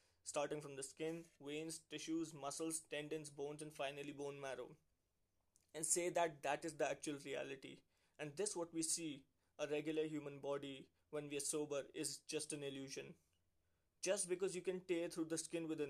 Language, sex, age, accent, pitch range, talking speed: Hindi, male, 20-39, native, 140-155 Hz, 180 wpm